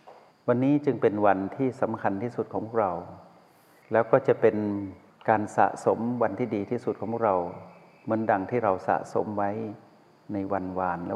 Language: Thai